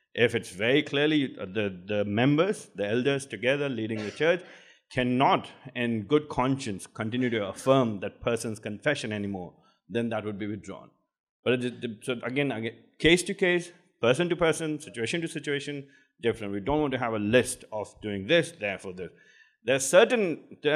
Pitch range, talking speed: 110-145 Hz, 175 wpm